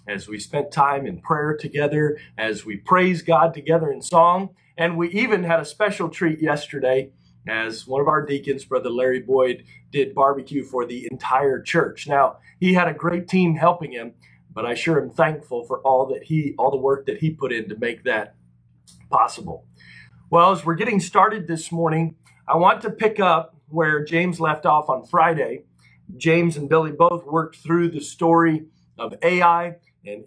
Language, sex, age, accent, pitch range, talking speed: English, male, 40-59, American, 135-175 Hz, 185 wpm